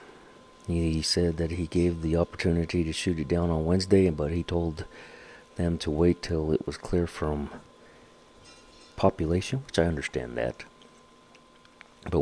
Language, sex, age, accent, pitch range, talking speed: English, male, 50-69, American, 75-85 Hz, 145 wpm